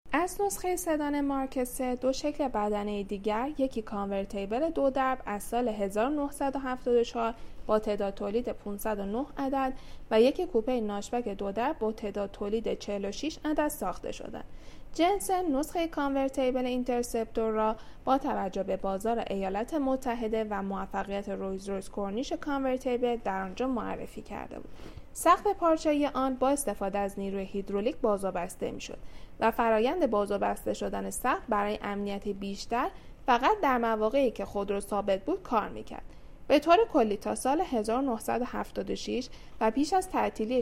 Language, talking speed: Persian, 135 wpm